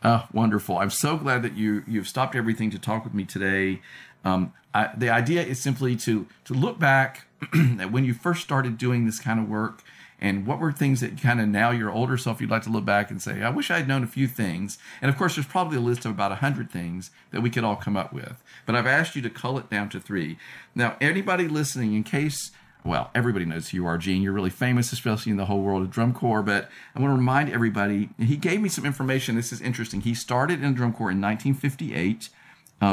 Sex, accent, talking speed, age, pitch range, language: male, American, 245 wpm, 50-69, 105-130 Hz, English